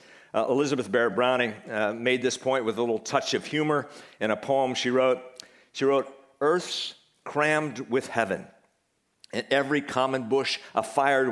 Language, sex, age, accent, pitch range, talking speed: English, male, 50-69, American, 115-150 Hz, 160 wpm